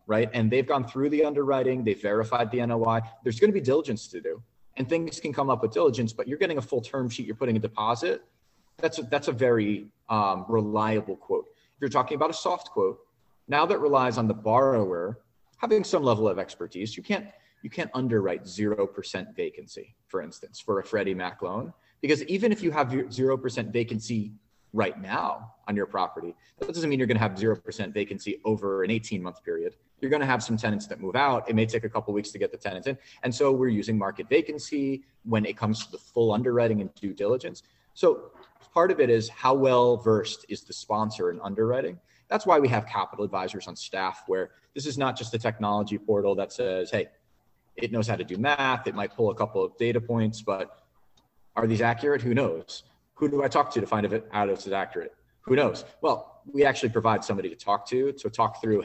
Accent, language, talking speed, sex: American, English, 220 wpm, male